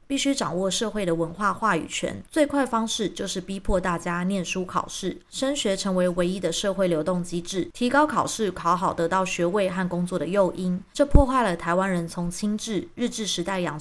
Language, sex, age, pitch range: Chinese, female, 20-39, 175-220 Hz